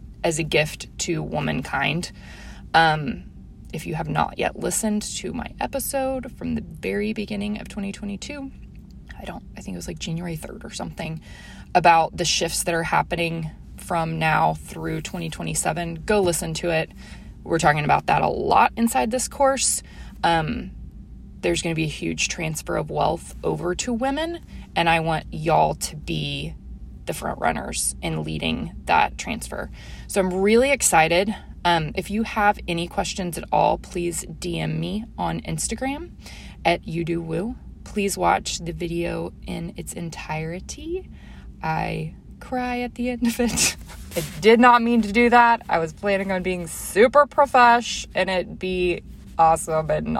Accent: American